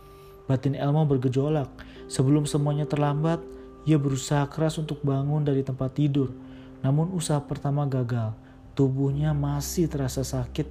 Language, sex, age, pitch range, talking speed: Indonesian, male, 40-59, 130-150 Hz, 125 wpm